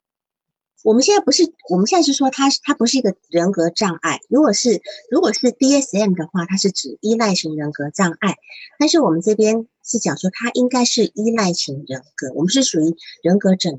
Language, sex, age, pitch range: Chinese, female, 50-69, 165-240 Hz